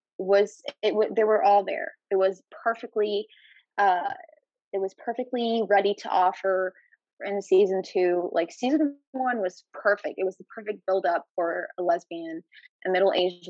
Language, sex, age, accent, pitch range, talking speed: English, female, 20-39, American, 185-220 Hz, 150 wpm